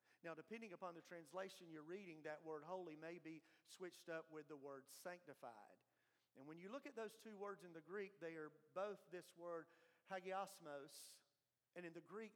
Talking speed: 190 wpm